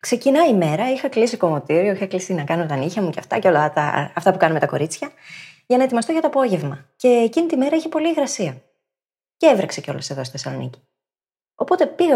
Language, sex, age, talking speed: Greek, female, 20-39, 215 wpm